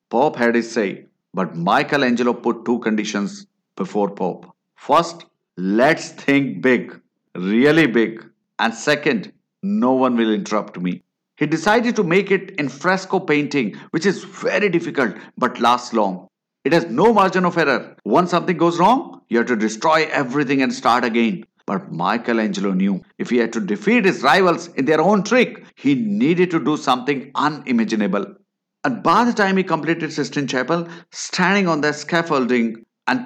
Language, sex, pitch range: English, male, 115-190 Hz